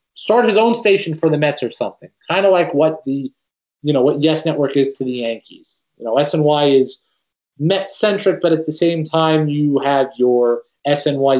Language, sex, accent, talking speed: English, male, American, 200 wpm